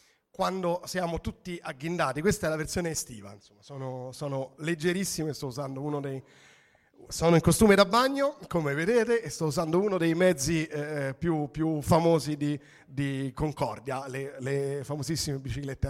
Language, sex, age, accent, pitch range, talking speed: Italian, male, 40-59, native, 135-185 Hz, 150 wpm